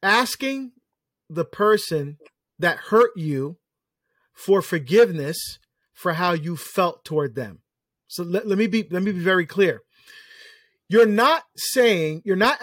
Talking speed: 140 wpm